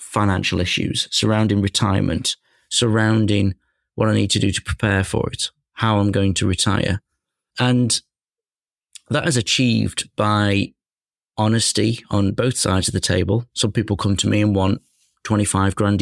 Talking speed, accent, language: 150 wpm, British, English